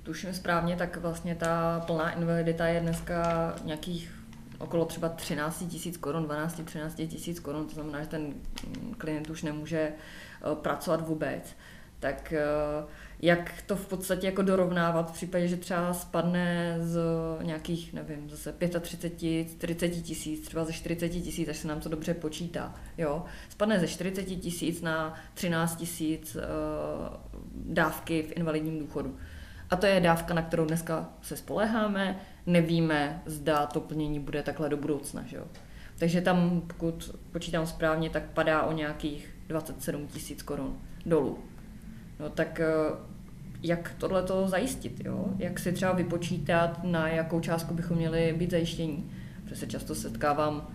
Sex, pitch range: female, 150-170 Hz